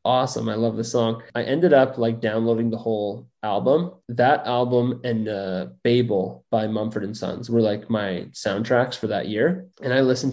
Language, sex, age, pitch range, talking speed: English, male, 20-39, 110-120 Hz, 185 wpm